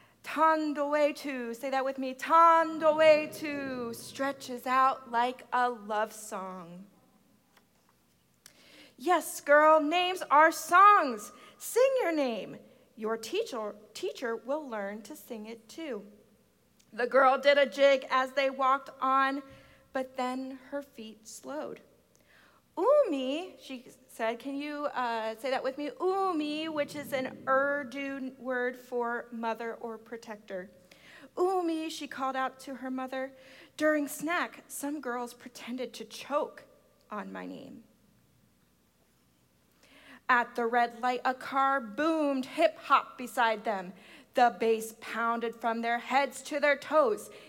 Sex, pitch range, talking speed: female, 230-290 Hz, 130 wpm